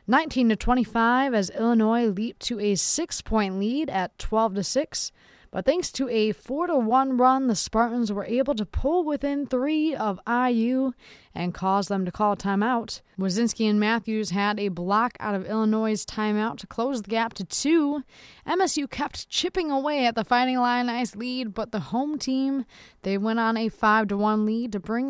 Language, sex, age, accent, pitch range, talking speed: English, female, 20-39, American, 200-250 Hz, 170 wpm